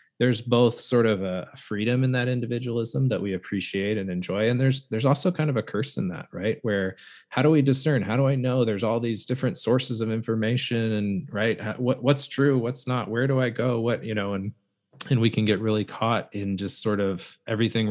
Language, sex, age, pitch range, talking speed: English, male, 20-39, 95-120 Hz, 220 wpm